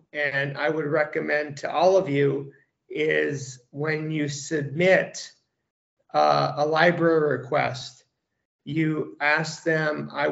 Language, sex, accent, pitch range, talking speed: English, male, American, 140-165 Hz, 115 wpm